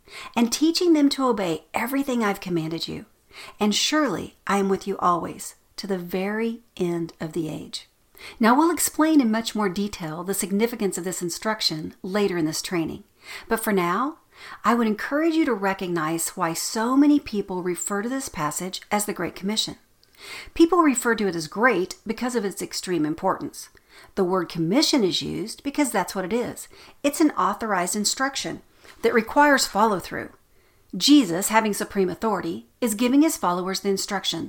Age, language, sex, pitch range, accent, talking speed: 50-69, English, female, 180-240 Hz, American, 170 wpm